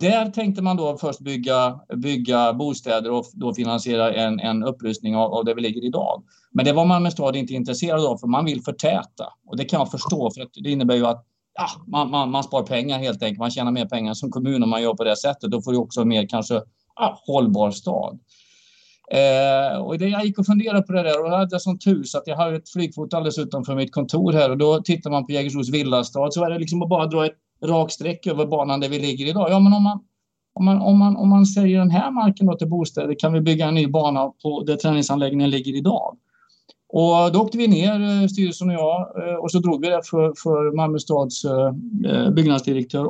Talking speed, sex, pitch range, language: 230 wpm, male, 135-180 Hz, Swedish